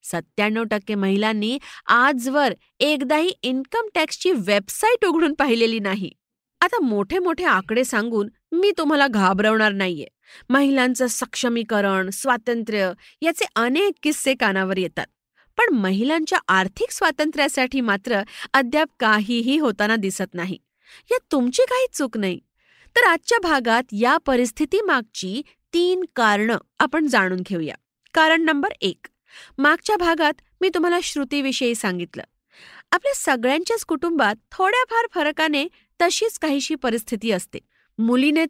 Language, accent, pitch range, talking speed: Marathi, native, 220-320 Hz, 80 wpm